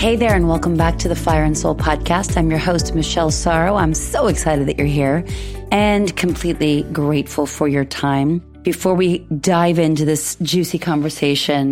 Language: English